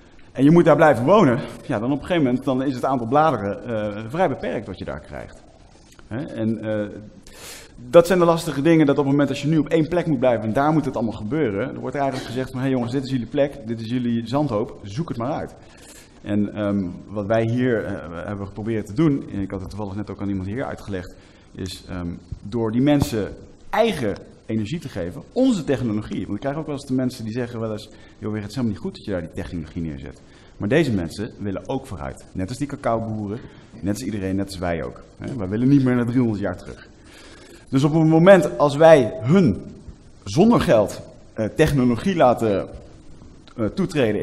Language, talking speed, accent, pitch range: Dutch, 220 wpm, Dutch, 100-135 Hz